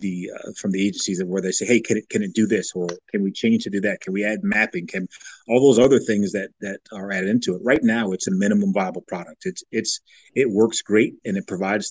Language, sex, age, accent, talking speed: English, male, 30-49, American, 260 wpm